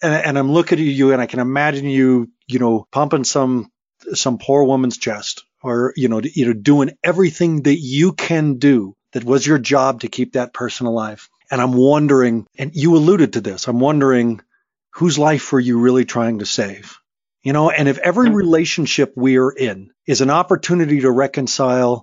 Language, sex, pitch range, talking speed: English, male, 120-150 Hz, 185 wpm